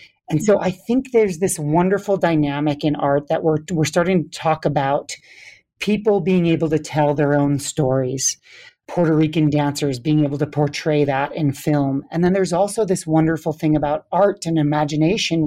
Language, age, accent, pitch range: English, 40-59, American, 150-165 Hz